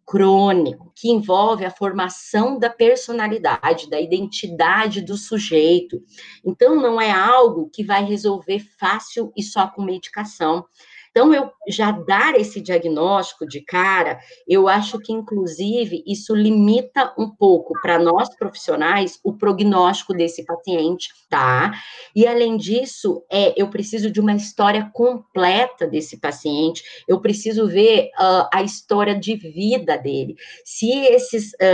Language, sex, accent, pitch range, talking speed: Portuguese, female, Brazilian, 180-220 Hz, 130 wpm